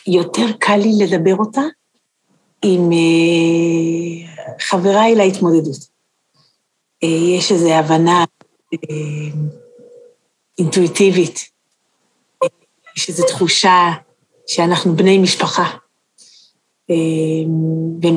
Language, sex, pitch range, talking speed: Hebrew, female, 170-220 Hz, 65 wpm